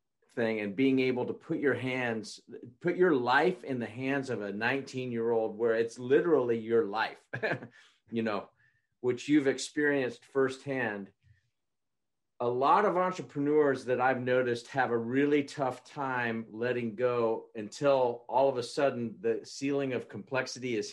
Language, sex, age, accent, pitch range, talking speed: English, male, 50-69, American, 115-140 Hz, 145 wpm